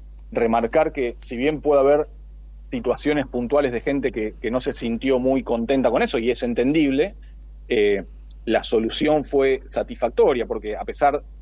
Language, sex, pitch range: Spanish, male, 115-150 Hz